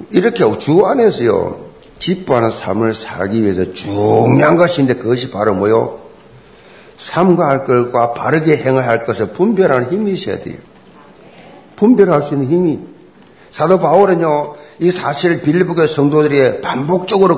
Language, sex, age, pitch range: Korean, male, 50-69, 135-195 Hz